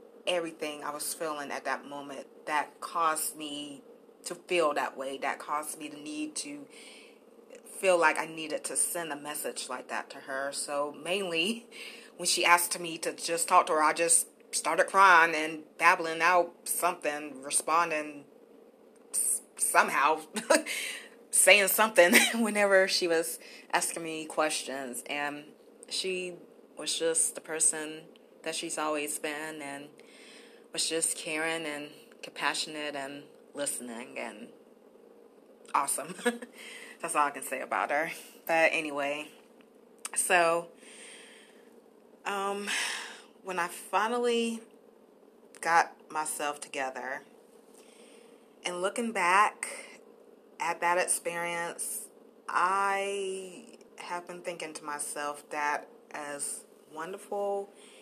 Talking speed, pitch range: 115 wpm, 150-200 Hz